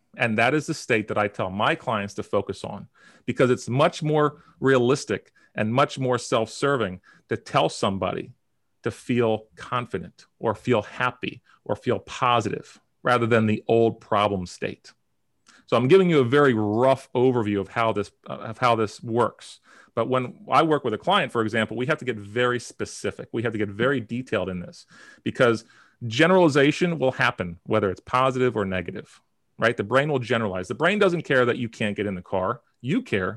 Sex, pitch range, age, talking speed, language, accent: male, 105-130 Hz, 40-59, 190 wpm, English, American